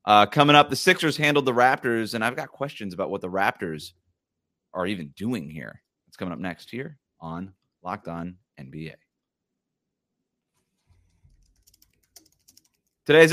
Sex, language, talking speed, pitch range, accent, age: male, English, 135 wpm, 100-145 Hz, American, 30-49